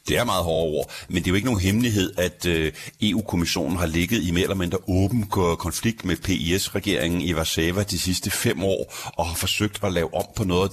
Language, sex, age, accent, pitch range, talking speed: Danish, male, 60-79, native, 90-105 Hz, 220 wpm